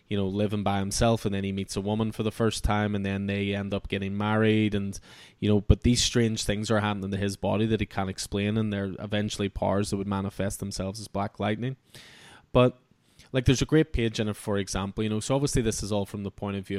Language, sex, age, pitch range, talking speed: English, male, 20-39, 100-110 Hz, 255 wpm